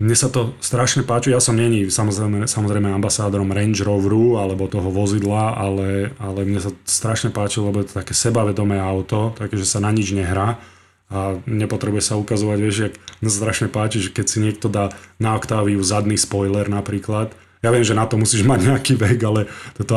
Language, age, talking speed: Slovak, 30-49, 200 wpm